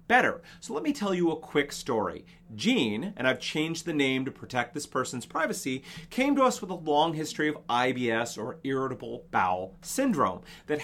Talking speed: 185 wpm